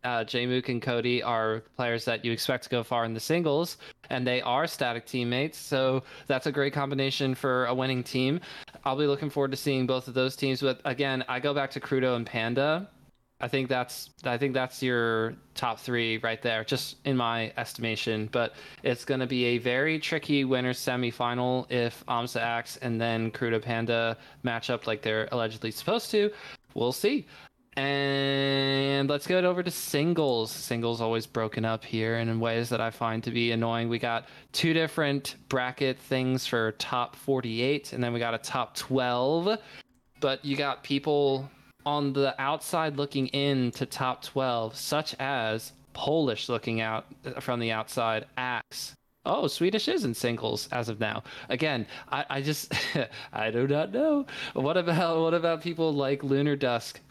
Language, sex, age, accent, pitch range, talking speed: English, male, 20-39, American, 115-140 Hz, 175 wpm